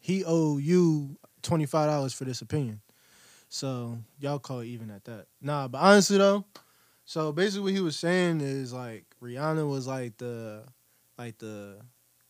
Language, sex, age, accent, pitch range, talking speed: English, male, 20-39, American, 115-145 Hz, 160 wpm